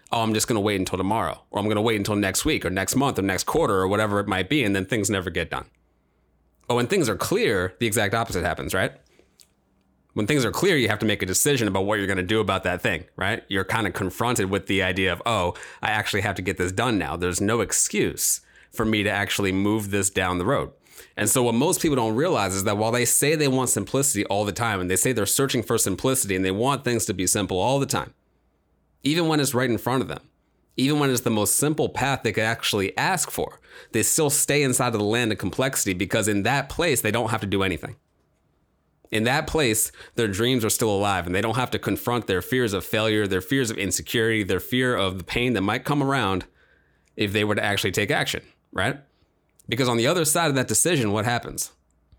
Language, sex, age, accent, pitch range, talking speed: English, male, 30-49, American, 95-120 Hz, 245 wpm